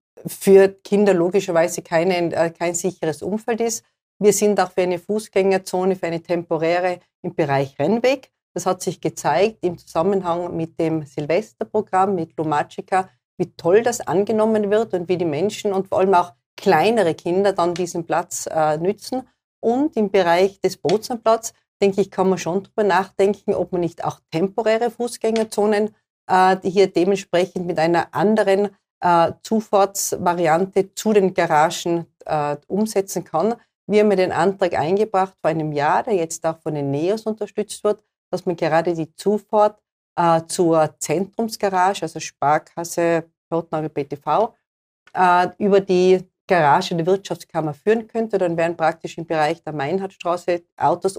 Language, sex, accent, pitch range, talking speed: German, female, Austrian, 165-200 Hz, 150 wpm